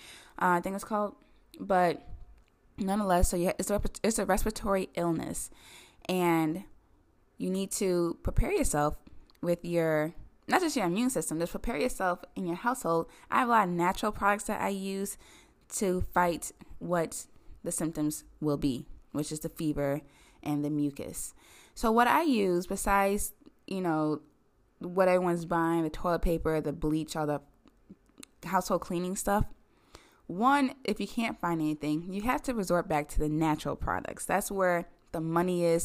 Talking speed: 160 wpm